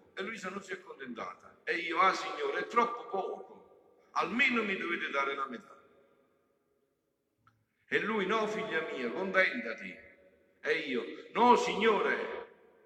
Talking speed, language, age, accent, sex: 135 wpm, Italian, 50-69, native, male